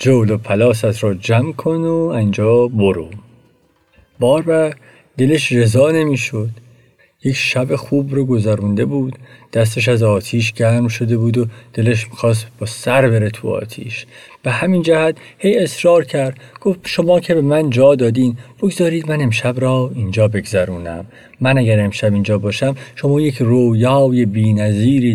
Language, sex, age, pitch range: Persian, male, 50-69, 110-135 Hz